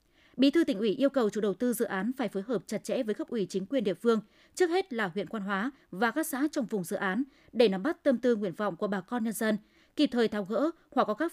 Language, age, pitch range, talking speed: Vietnamese, 20-39, 205-275 Hz, 290 wpm